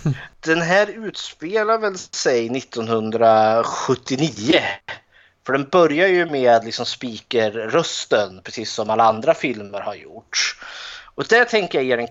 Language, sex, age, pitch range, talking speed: Swedish, male, 20-39, 110-150 Hz, 135 wpm